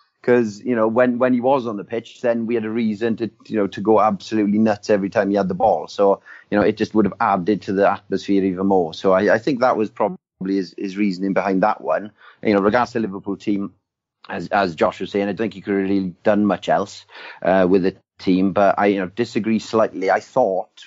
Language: English